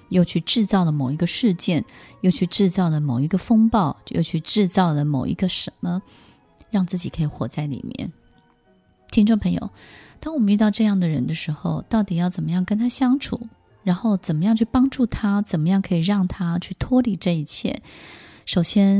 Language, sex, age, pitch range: Chinese, female, 20-39, 160-205 Hz